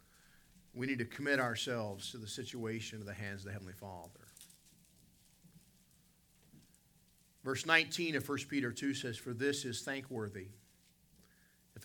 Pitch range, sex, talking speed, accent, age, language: 100-160 Hz, male, 135 wpm, American, 50-69, English